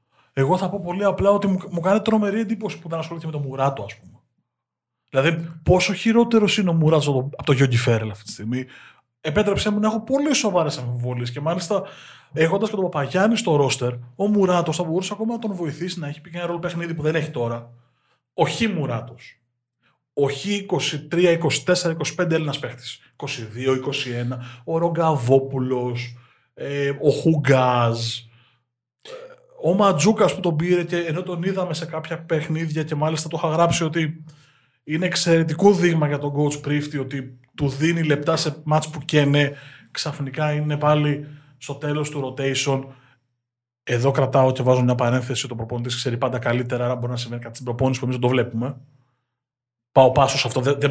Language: Greek